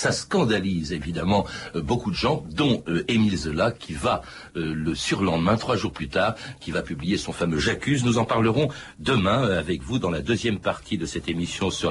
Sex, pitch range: male, 90-120 Hz